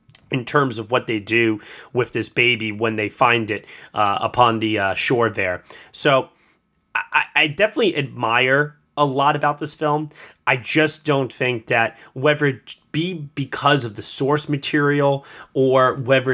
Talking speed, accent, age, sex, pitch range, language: 160 wpm, American, 20-39, male, 115-145 Hz, English